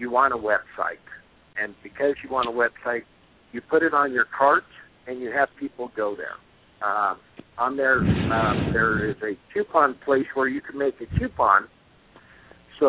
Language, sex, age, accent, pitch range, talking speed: English, male, 60-79, American, 120-140 Hz, 170 wpm